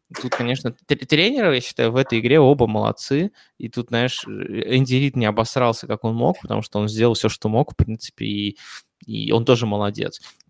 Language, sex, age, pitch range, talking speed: Russian, male, 20-39, 115-130 Hz, 195 wpm